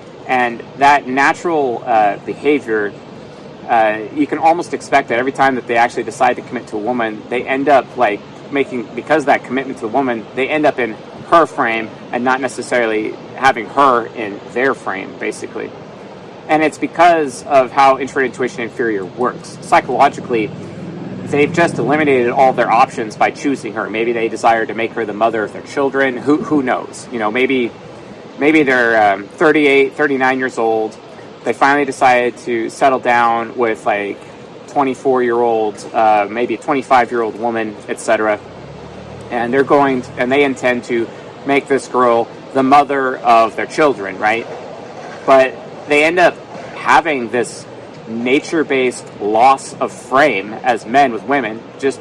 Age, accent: 30-49, American